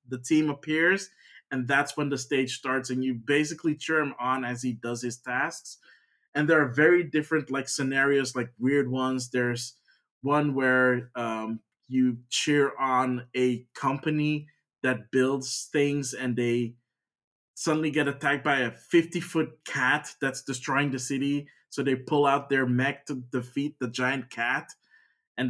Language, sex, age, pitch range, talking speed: English, male, 20-39, 125-150 Hz, 160 wpm